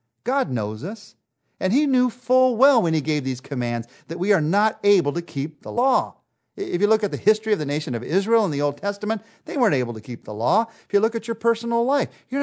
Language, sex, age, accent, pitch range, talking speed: English, male, 50-69, American, 115-175 Hz, 250 wpm